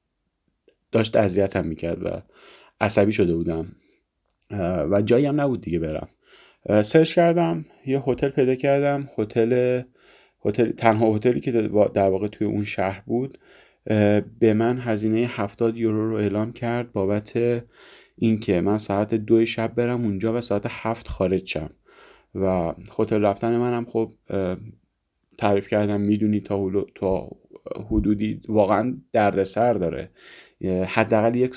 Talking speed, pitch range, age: 125 wpm, 95-115 Hz, 30-49